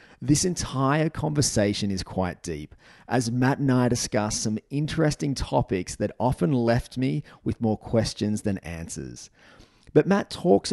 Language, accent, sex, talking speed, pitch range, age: English, Australian, male, 145 wpm, 105-135 Hz, 30-49